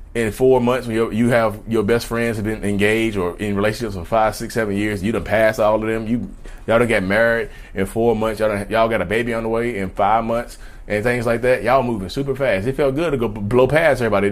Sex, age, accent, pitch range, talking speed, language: male, 30-49, American, 105-140 Hz, 265 wpm, English